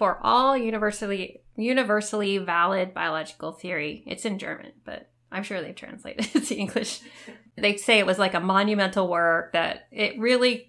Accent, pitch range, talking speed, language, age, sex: American, 180-220 Hz, 165 wpm, English, 20-39, female